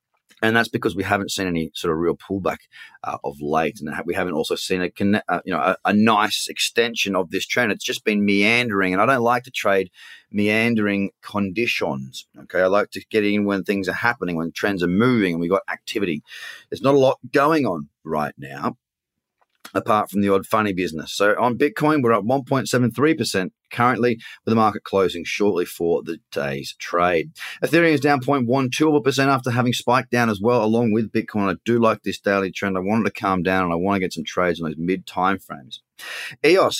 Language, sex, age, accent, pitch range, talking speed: English, male, 30-49, Australian, 95-125 Hz, 205 wpm